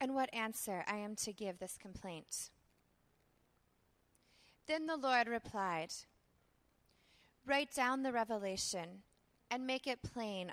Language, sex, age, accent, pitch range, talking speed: English, female, 20-39, American, 185-250 Hz, 120 wpm